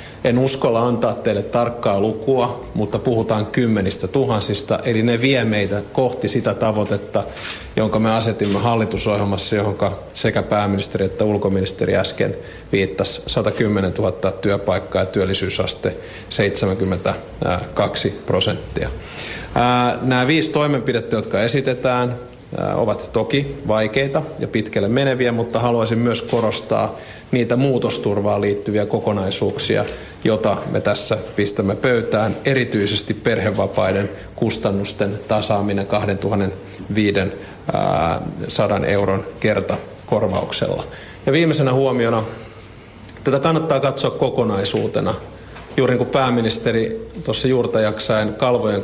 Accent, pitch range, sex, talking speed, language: native, 100-125 Hz, male, 95 wpm, Finnish